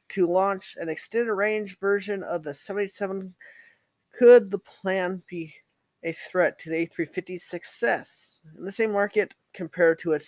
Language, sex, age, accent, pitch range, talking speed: English, male, 20-39, American, 160-210 Hz, 145 wpm